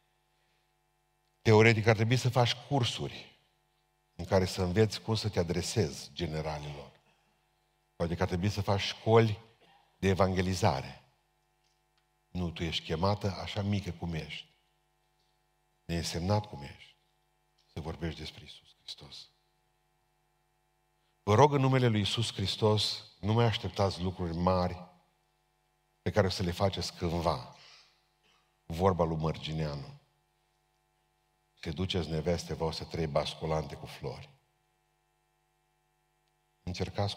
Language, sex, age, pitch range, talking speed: Romanian, male, 50-69, 85-100 Hz, 120 wpm